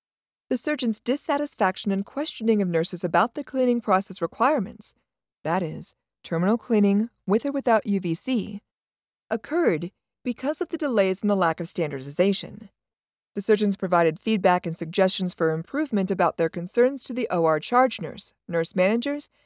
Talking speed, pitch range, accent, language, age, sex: 150 wpm, 180-245 Hz, American, English, 40-59, female